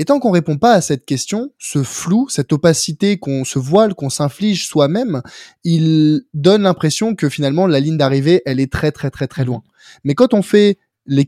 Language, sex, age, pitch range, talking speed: French, male, 20-39, 135-170 Hz, 205 wpm